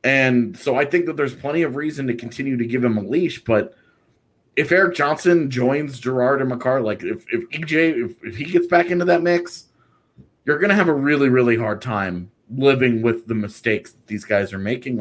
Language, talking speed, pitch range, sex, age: English, 215 wpm, 115-155 Hz, male, 30-49